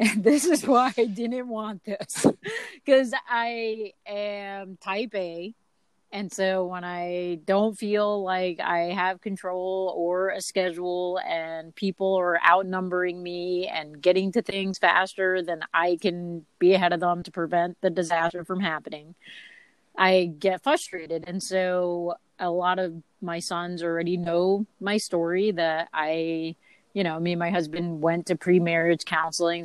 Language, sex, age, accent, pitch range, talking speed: English, female, 30-49, American, 170-205 Hz, 150 wpm